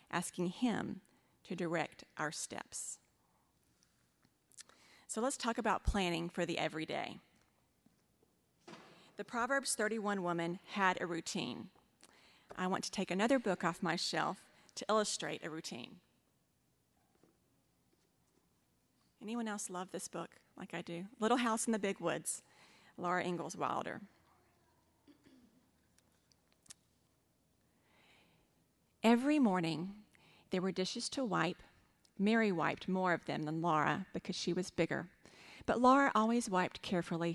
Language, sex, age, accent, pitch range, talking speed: English, female, 40-59, American, 170-215 Hz, 120 wpm